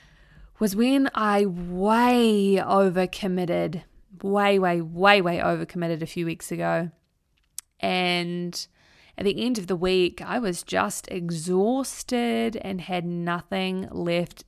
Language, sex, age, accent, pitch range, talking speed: English, female, 20-39, Australian, 175-200 Hz, 120 wpm